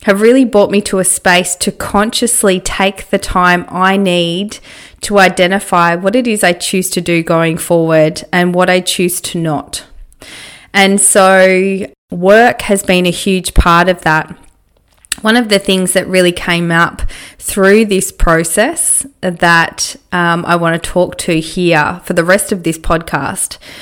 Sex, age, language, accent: female, 20-39, English, Australian